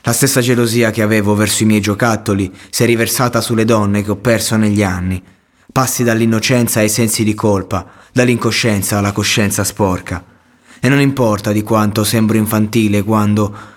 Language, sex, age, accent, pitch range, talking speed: Italian, male, 20-39, native, 100-115 Hz, 160 wpm